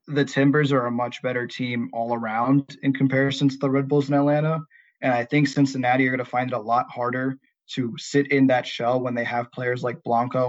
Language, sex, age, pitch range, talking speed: English, male, 20-39, 125-145 Hz, 230 wpm